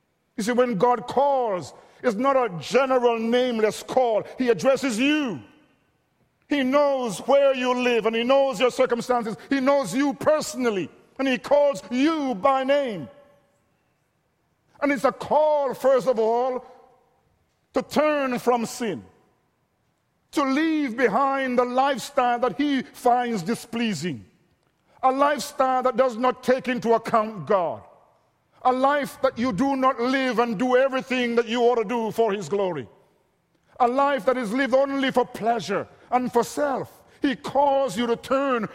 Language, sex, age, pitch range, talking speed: English, male, 50-69, 235-270 Hz, 150 wpm